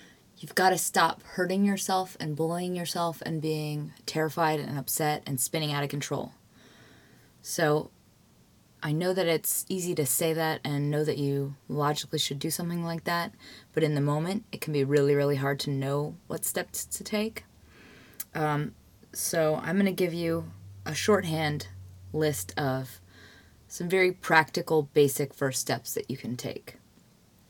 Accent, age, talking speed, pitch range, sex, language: American, 20-39, 165 wpm, 145-175 Hz, female, English